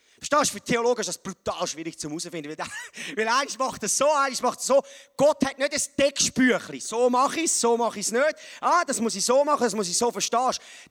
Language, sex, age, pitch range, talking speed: German, male, 30-49, 215-280 Hz, 255 wpm